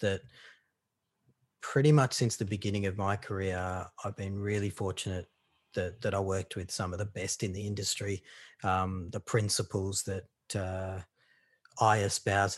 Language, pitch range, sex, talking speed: English, 95-110 Hz, male, 155 wpm